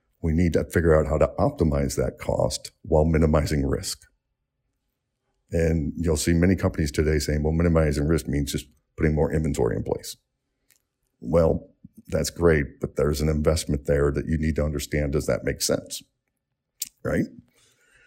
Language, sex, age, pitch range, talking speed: English, male, 50-69, 75-90 Hz, 160 wpm